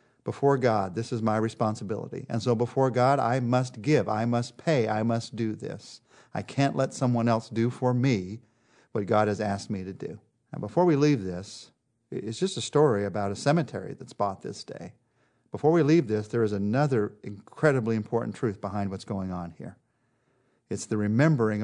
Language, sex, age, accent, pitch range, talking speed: English, male, 50-69, American, 105-135 Hz, 190 wpm